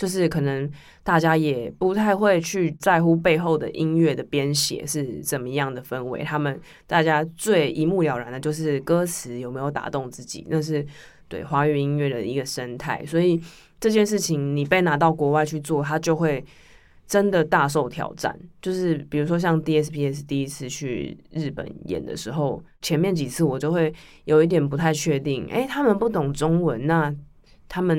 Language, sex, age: Chinese, female, 20-39